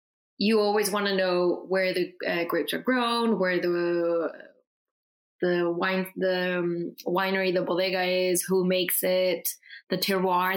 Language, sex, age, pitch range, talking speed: English, female, 20-39, 180-215 Hz, 150 wpm